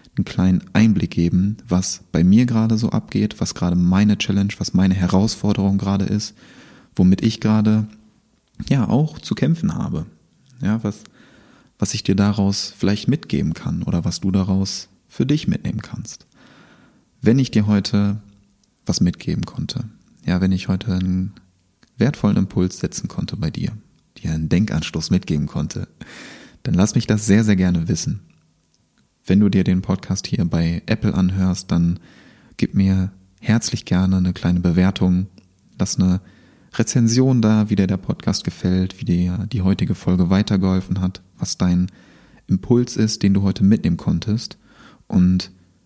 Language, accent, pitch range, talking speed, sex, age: German, German, 90-105 Hz, 155 wpm, male, 30-49